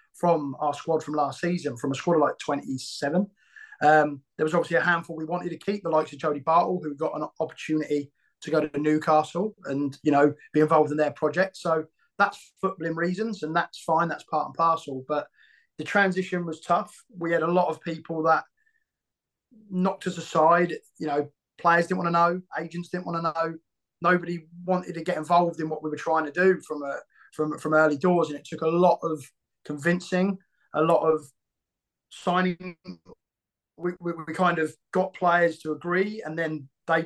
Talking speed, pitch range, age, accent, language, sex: 200 wpm, 150-175 Hz, 20-39, British, English, male